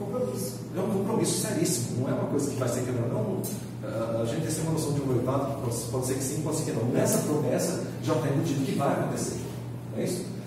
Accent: Brazilian